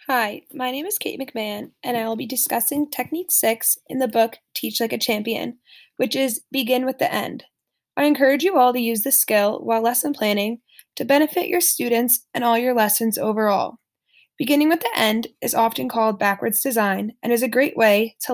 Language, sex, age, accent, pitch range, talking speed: English, female, 10-29, American, 225-275 Hz, 200 wpm